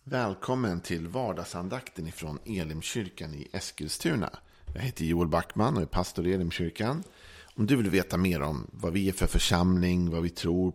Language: Swedish